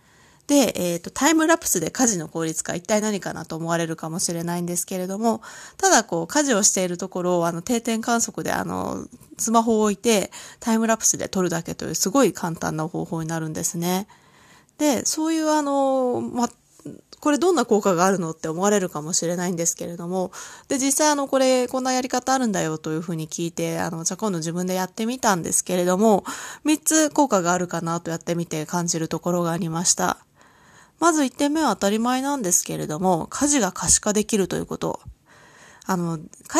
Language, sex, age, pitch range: Japanese, female, 20-39, 170-260 Hz